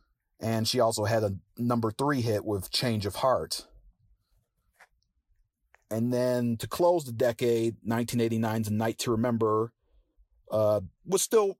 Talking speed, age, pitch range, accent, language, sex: 130 wpm, 40-59, 105-130 Hz, American, English, male